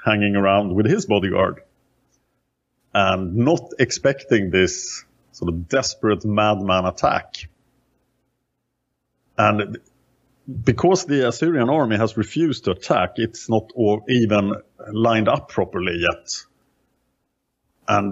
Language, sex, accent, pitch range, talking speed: English, male, Norwegian, 100-130 Hz, 105 wpm